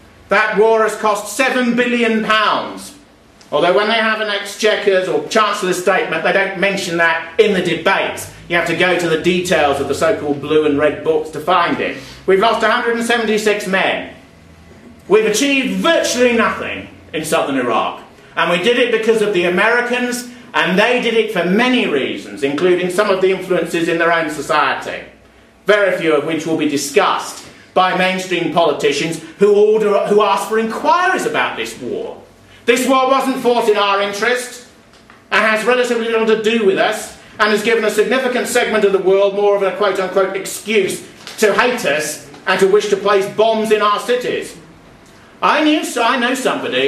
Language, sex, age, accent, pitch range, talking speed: English, male, 50-69, British, 185-225 Hz, 175 wpm